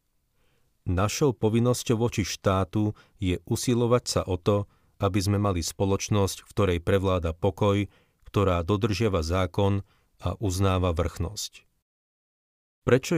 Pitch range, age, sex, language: 90-105 Hz, 40-59, male, Slovak